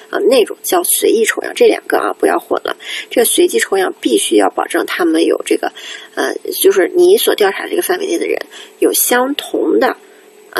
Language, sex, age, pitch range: Chinese, female, 20-39, 365-420 Hz